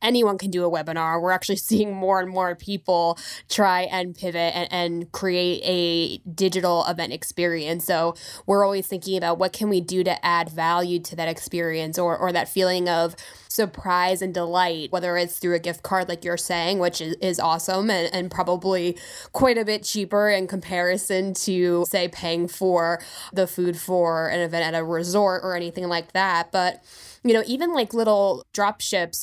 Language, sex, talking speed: English, female, 185 wpm